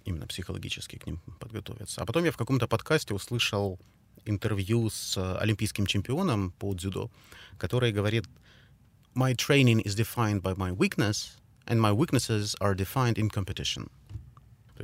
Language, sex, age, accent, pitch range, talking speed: Russian, male, 30-49, native, 100-125 Hz, 140 wpm